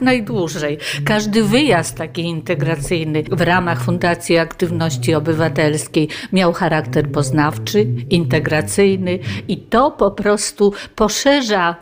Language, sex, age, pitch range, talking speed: Polish, female, 50-69, 165-210 Hz, 95 wpm